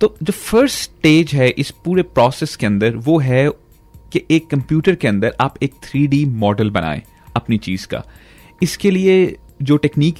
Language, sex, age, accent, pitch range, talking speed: Hindi, male, 30-49, native, 120-155 Hz, 170 wpm